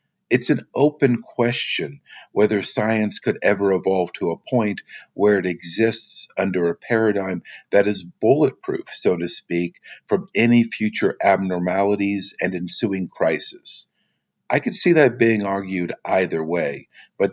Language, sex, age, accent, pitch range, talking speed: English, male, 50-69, American, 90-120 Hz, 140 wpm